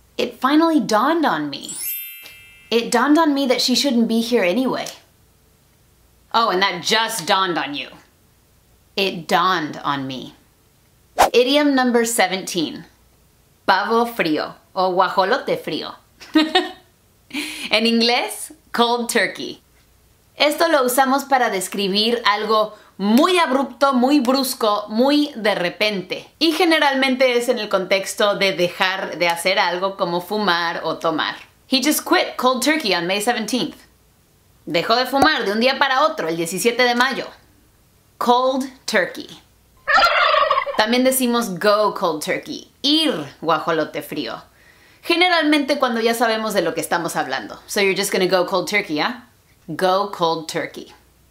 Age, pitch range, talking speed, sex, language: 30-49, 190-270 Hz, 135 wpm, female, English